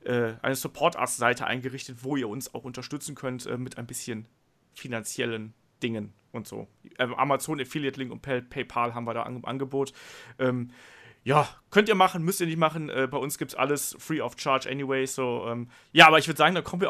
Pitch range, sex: 130-155 Hz, male